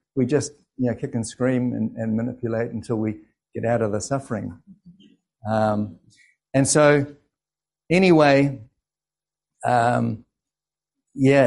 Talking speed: 120 wpm